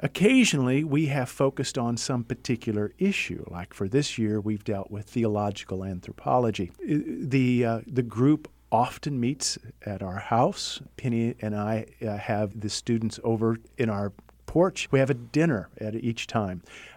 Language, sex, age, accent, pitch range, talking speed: English, male, 50-69, American, 105-135 Hz, 155 wpm